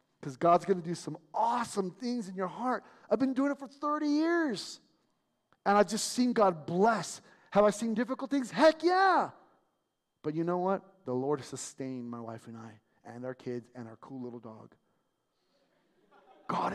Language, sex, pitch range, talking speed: English, male, 145-230 Hz, 185 wpm